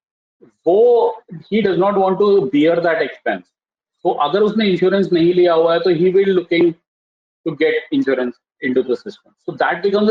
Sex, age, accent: male, 30-49, native